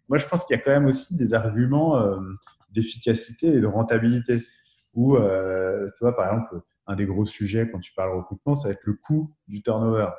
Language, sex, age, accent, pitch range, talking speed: French, male, 30-49, French, 100-130 Hz, 220 wpm